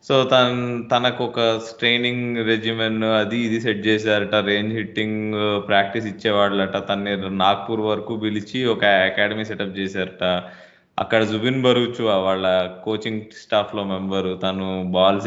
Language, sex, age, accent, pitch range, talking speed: Telugu, male, 20-39, native, 95-120 Hz, 125 wpm